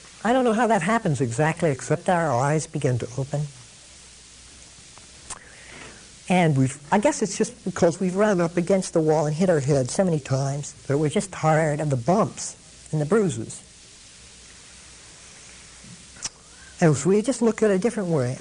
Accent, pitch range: American, 120-205 Hz